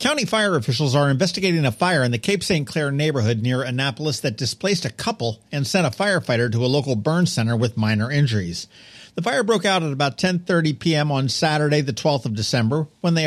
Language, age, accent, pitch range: English, 50-69, American, 125-170 Hz